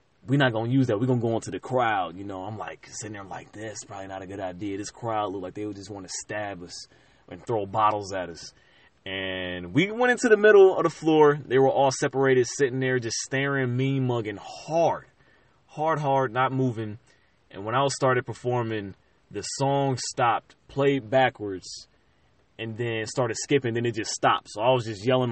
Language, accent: English, American